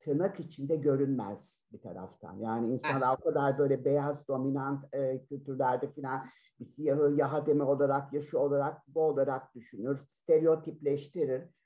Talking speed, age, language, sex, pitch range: 135 wpm, 50-69, Turkish, male, 130-160 Hz